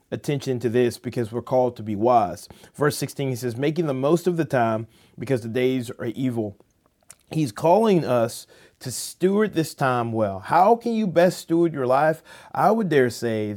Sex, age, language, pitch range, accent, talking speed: male, 30-49, English, 120-165 Hz, American, 190 wpm